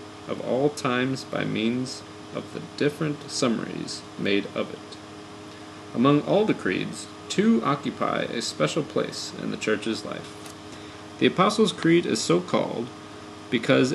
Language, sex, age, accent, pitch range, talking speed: English, male, 30-49, American, 105-125 Hz, 140 wpm